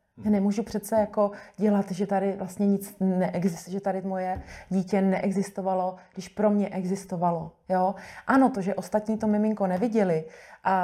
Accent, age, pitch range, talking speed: native, 30-49, 180-210 Hz, 155 wpm